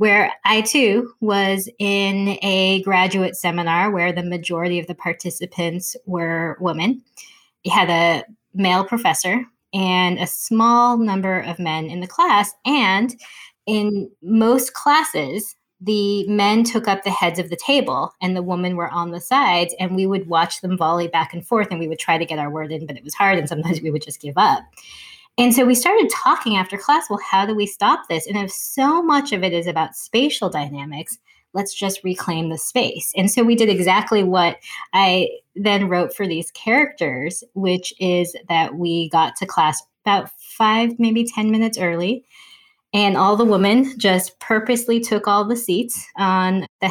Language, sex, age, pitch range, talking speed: English, female, 20-39, 175-220 Hz, 185 wpm